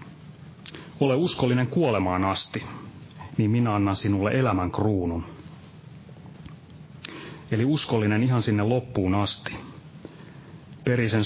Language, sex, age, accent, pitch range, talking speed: Finnish, male, 30-49, native, 110-155 Hz, 90 wpm